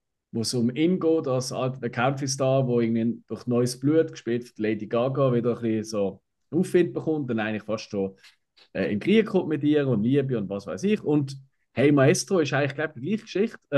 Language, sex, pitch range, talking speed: German, male, 120-160 Hz, 210 wpm